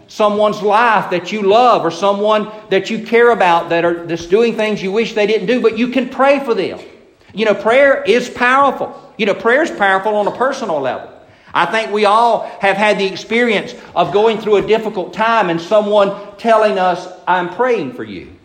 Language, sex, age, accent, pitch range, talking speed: English, male, 50-69, American, 180-225 Hz, 205 wpm